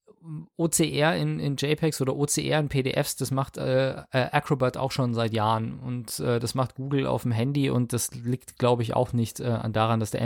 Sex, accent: male, German